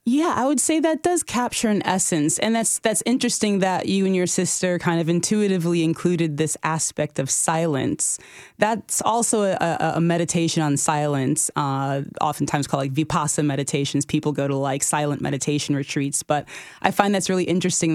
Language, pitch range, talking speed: English, 145-175 Hz, 175 wpm